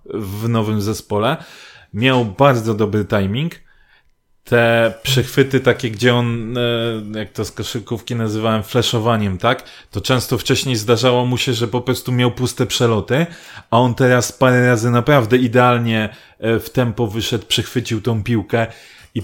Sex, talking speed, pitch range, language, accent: male, 140 wpm, 115-130 Hz, Polish, native